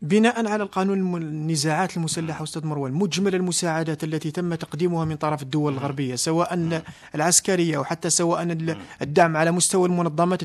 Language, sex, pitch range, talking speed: Arabic, male, 180-210 Hz, 145 wpm